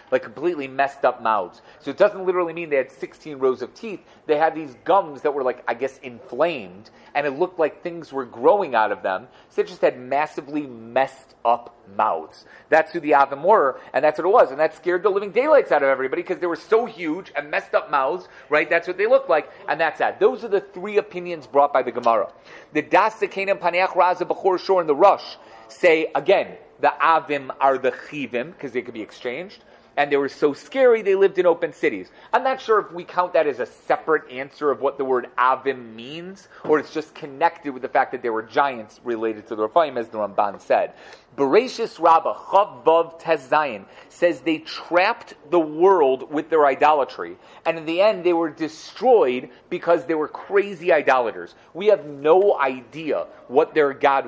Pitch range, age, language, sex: 140-185 Hz, 30-49, English, male